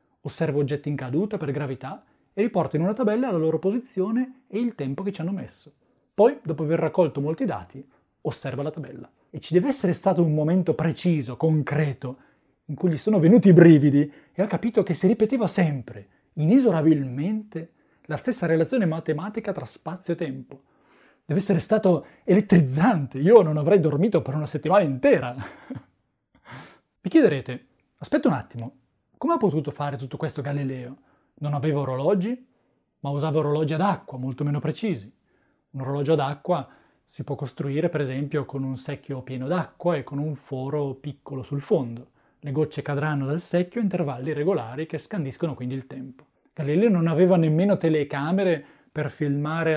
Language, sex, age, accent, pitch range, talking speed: Italian, male, 30-49, native, 140-180 Hz, 165 wpm